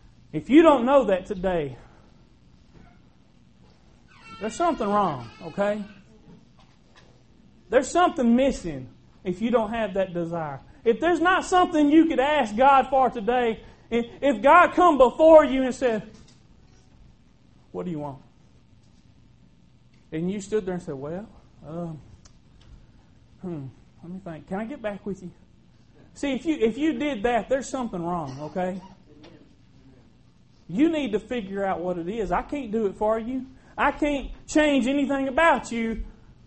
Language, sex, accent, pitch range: English, male, American, 175-260 Hz